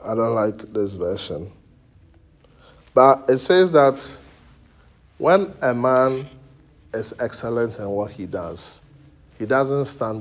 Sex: male